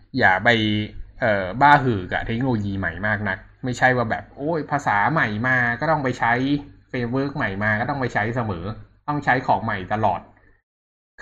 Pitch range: 95-130 Hz